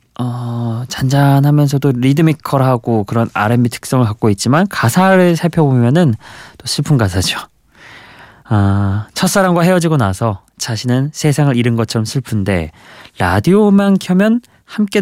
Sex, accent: male, native